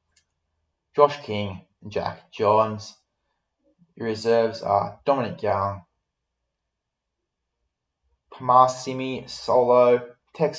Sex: male